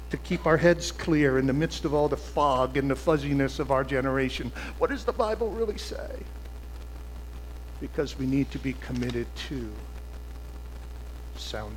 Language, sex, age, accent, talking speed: English, male, 60-79, American, 165 wpm